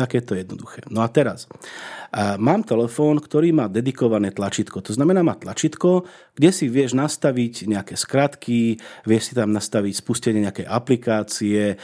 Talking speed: 150 wpm